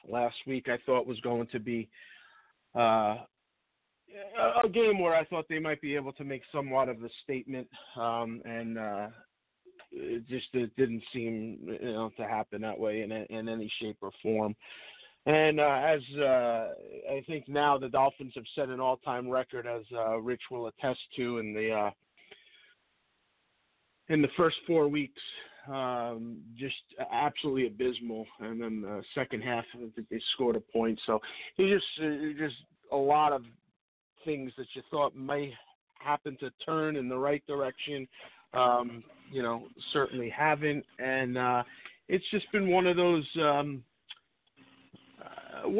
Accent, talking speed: American, 150 wpm